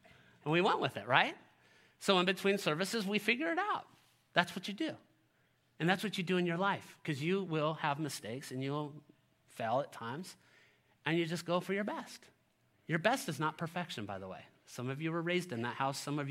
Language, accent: English, American